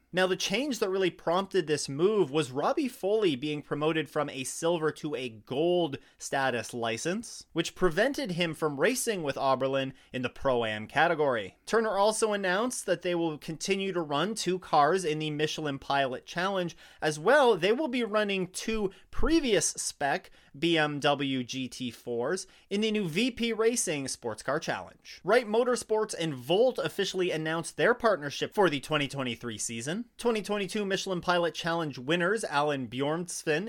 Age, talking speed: 30-49, 155 wpm